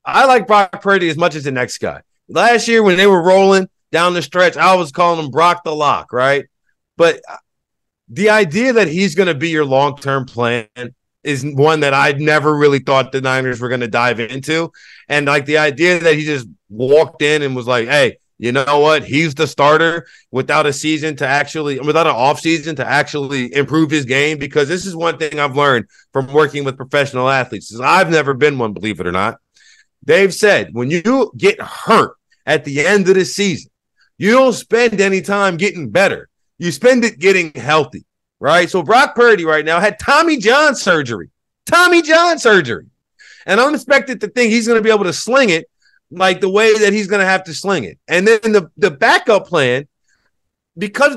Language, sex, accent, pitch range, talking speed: English, male, American, 145-205 Hz, 200 wpm